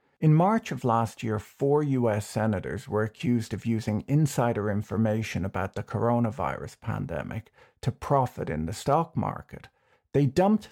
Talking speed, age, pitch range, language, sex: 145 wpm, 50-69, 105-130 Hz, English, male